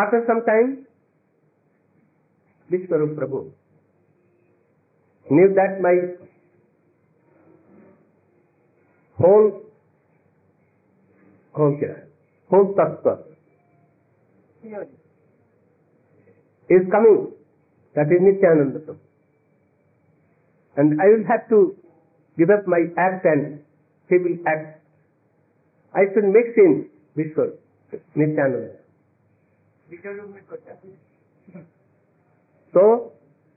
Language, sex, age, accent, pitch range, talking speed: Hindi, male, 50-69, native, 160-200 Hz, 65 wpm